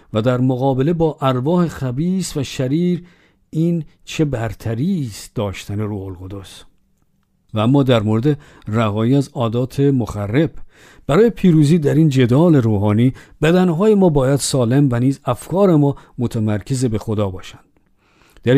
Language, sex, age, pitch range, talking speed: Persian, male, 50-69, 115-155 Hz, 130 wpm